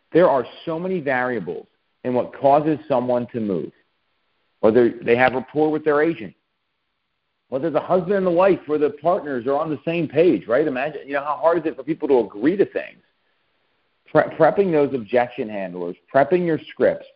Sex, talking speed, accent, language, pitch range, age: male, 185 wpm, American, English, 115-155 Hz, 40-59